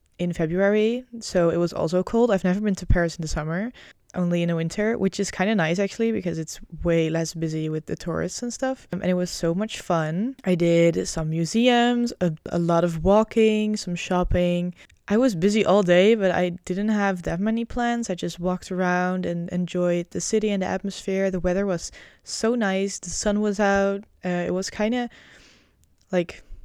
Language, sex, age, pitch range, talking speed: English, female, 20-39, 175-215 Hz, 205 wpm